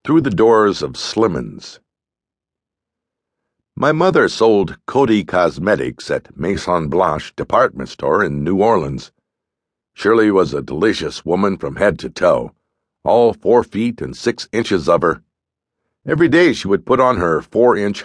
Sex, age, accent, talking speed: male, 60-79, American, 145 wpm